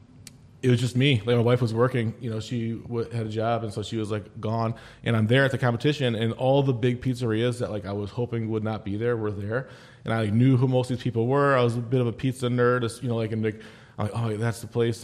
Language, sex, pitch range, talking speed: English, male, 115-130 Hz, 265 wpm